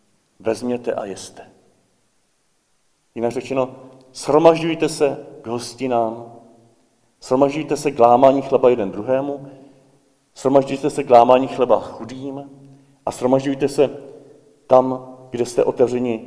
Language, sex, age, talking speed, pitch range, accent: Czech, male, 50-69, 100 wpm, 115-135 Hz, native